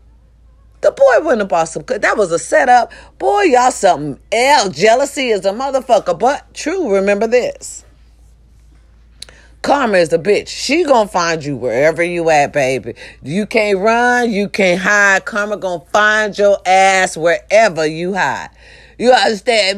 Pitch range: 170-235 Hz